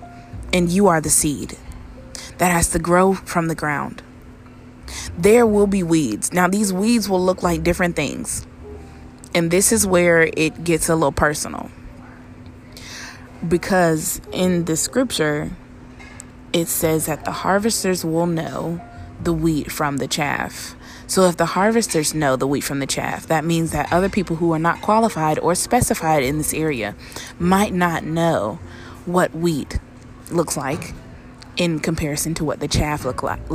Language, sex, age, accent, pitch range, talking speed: English, female, 20-39, American, 145-180 Hz, 155 wpm